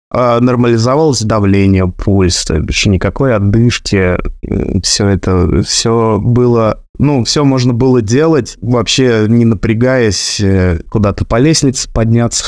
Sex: male